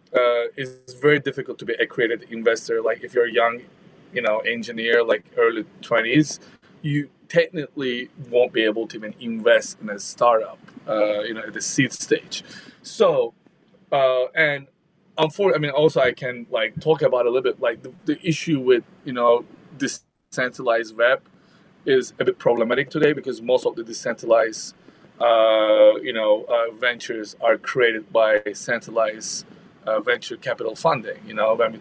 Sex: male